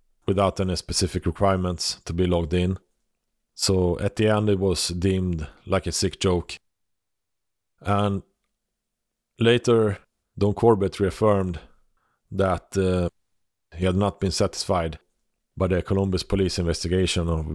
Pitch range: 85-100 Hz